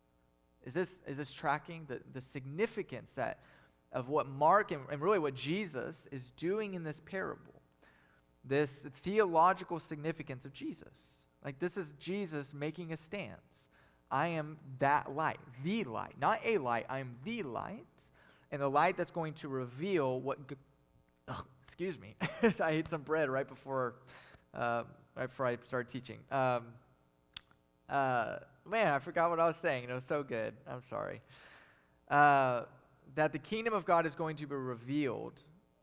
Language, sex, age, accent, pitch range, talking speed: English, male, 20-39, American, 125-165 Hz, 160 wpm